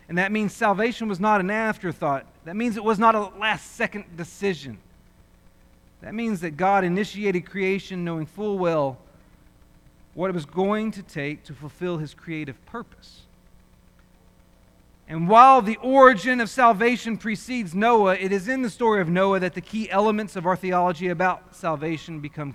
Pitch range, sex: 165-225 Hz, male